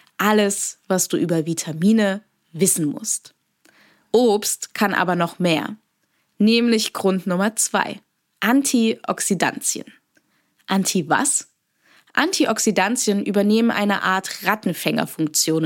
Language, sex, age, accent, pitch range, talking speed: German, female, 20-39, German, 180-235 Hz, 90 wpm